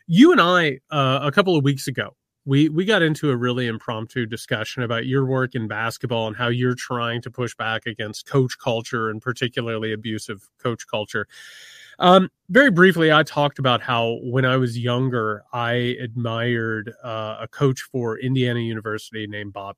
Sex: male